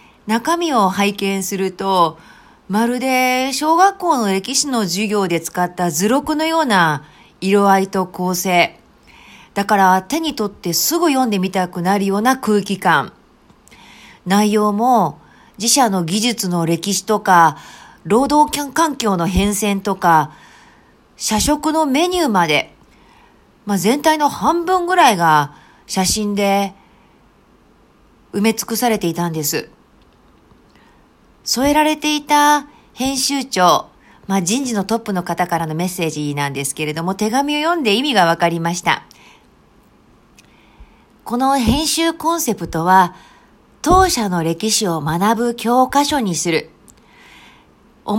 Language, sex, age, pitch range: Japanese, female, 40-59, 185-270 Hz